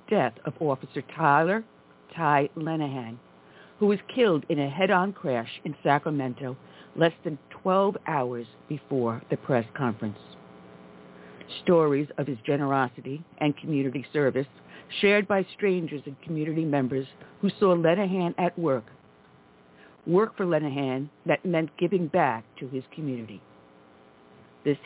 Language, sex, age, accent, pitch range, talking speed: English, female, 60-79, American, 125-180 Hz, 125 wpm